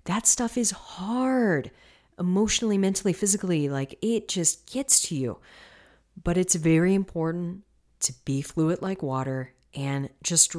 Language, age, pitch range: English, 40-59, 130-175 Hz